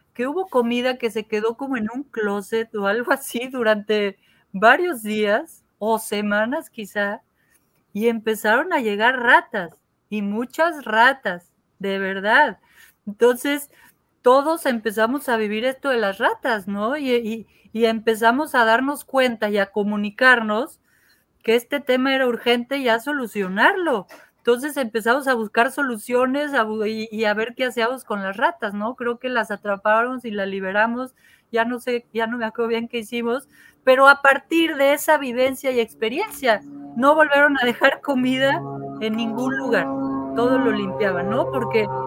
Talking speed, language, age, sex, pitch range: 155 wpm, Spanish, 40-59, female, 215-270 Hz